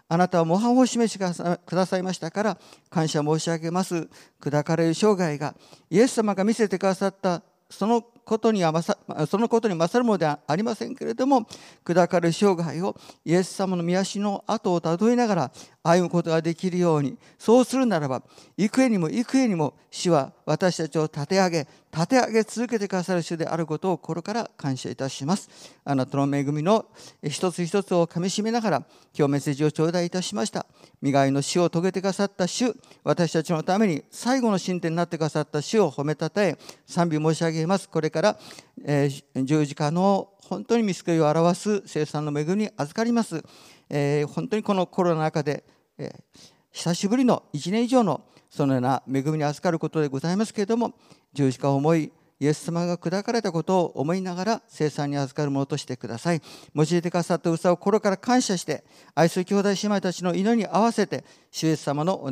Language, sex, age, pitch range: Japanese, male, 50-69, 155-200 Hz